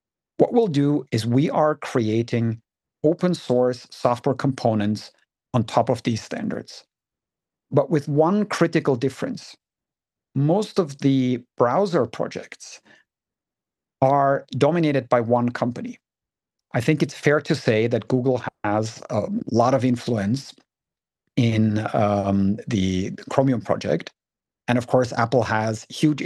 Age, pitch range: 50-69, 115-145 Hz